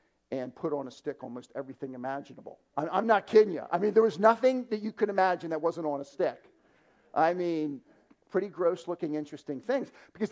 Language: English